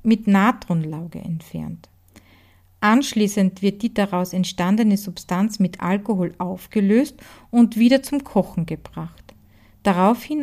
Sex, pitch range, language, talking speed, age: female, 175-230 Hz, German, 105 wpm, 40-59